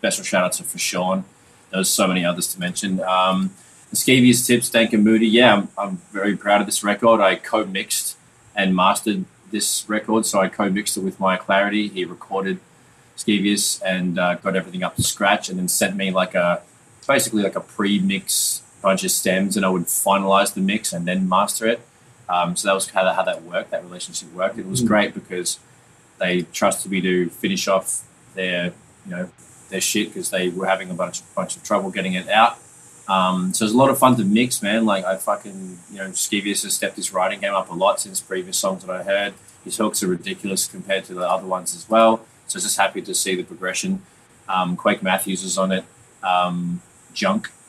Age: 20-39